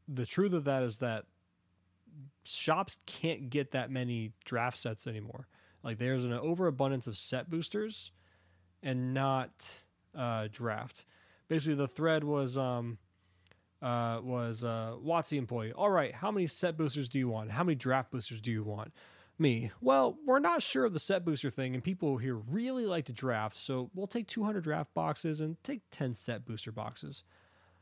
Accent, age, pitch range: American, 20-39, 115-160 Hz